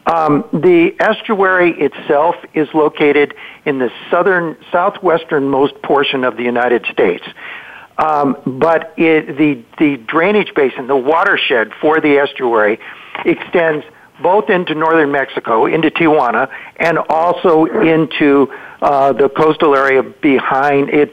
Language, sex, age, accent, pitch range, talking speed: English, male, 60-79, American, 140-165 Hz, 125 wpm